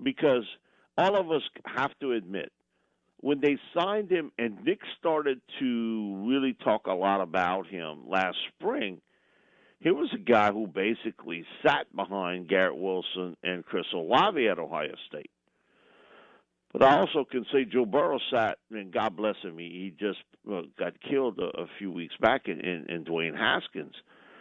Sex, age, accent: male, 50-69, American